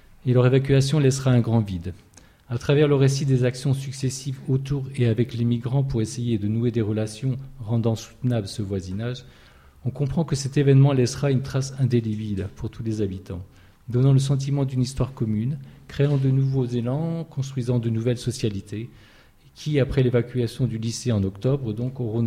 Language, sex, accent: French, male, French